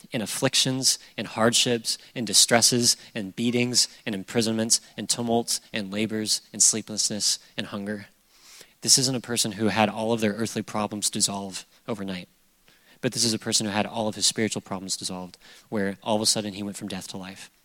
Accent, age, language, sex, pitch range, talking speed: American, 30-49, English, male, 105-130 Hz, 185 wpm